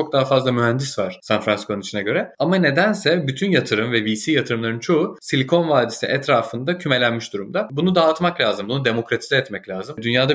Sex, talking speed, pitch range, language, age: male, 170 wpm, 115-165 Hz, Turkish, 30-49